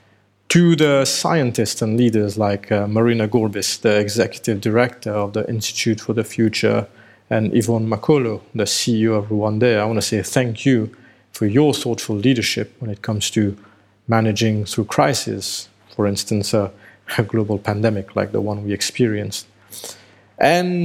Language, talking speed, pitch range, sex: English, 155 wpm, 105-120 Hz, male